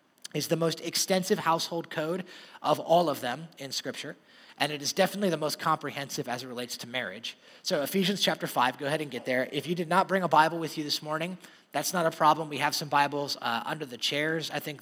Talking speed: 235 wpm